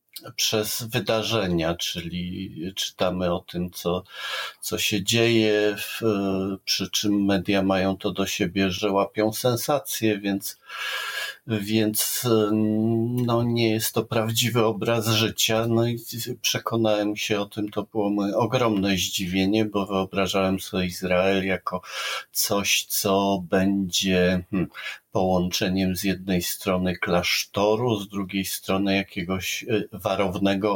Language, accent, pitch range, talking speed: Polish, native, 90-110 Hz, 115 wpm